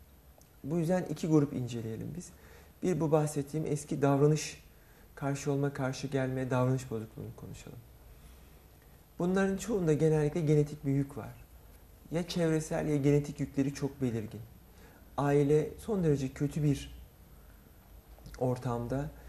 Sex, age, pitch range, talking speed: male, 40-59, 105-155 Hz, 120 wpm